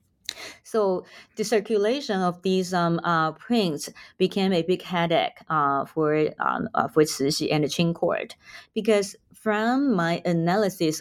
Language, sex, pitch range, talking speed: English, female, 160-195 Hz, 140 wpm